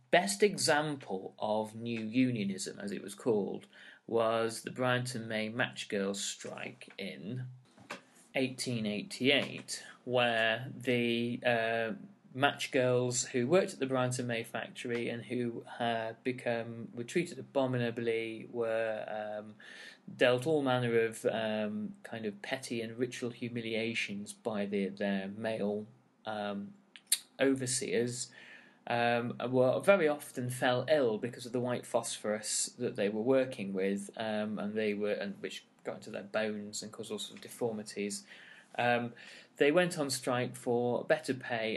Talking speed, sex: 140 wpm, male